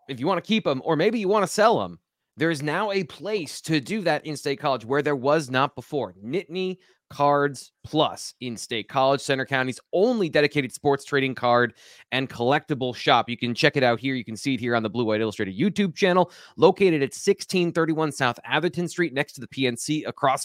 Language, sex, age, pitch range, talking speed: English, male, 30-49, 125-170 Hz, 215 wpm